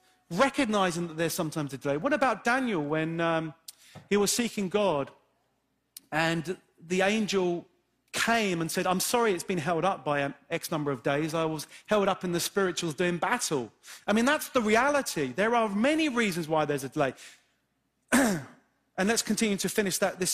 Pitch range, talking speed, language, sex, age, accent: 170-235 Hz, 175 wpm, English, male, 40-59, British